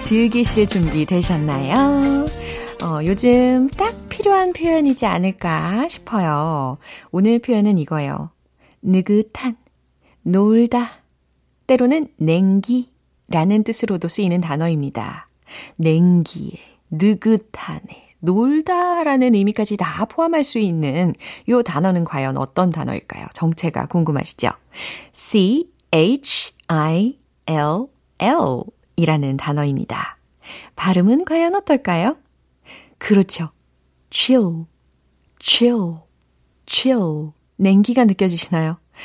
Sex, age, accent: female, 40-59, native